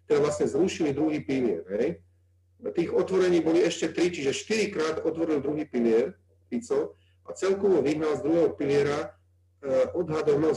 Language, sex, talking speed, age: Slovak, male, 140 wpm, 40-59